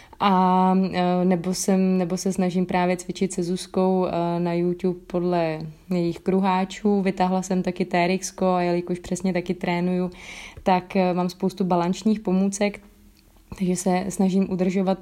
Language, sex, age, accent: Czech, female, 20-39, native